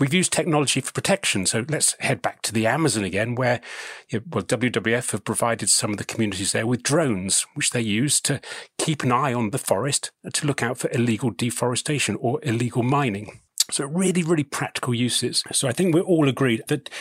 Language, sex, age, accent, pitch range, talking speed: English, male, 40-59, British, 105-130 Hz, 200 wpm